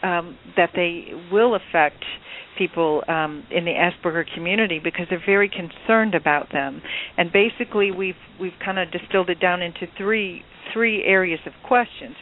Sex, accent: female, American